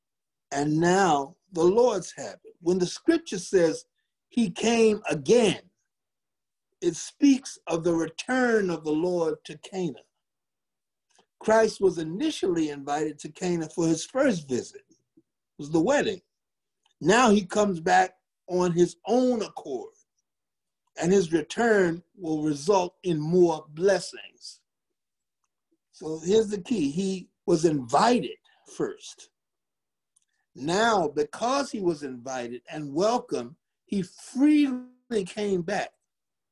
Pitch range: 160-240 Hz